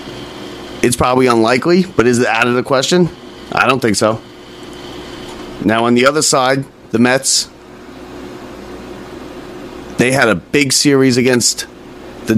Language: English